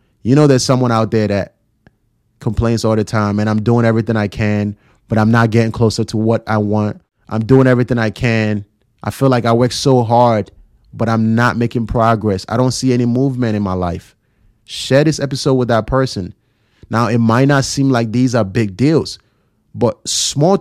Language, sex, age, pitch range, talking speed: English, male, 30-49, 110-135 Hz, 200 wpm